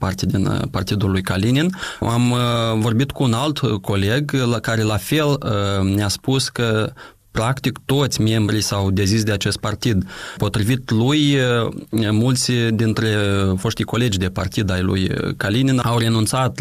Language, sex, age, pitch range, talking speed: Romanian, male, 20-39, 100-120 Hz, 150 wpm